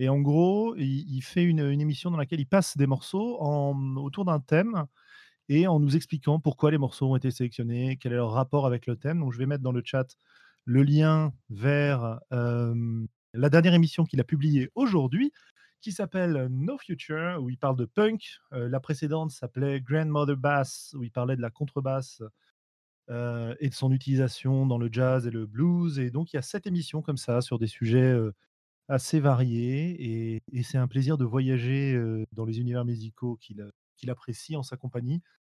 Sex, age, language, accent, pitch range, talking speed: male, 30-49, French, French, 120-150 Hz, 195 wpm